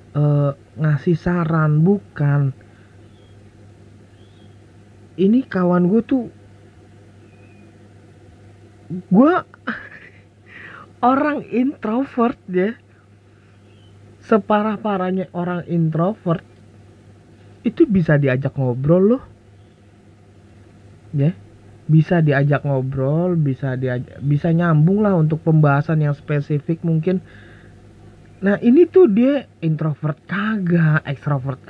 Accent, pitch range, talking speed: native, 105-170 Hz, 80 wpm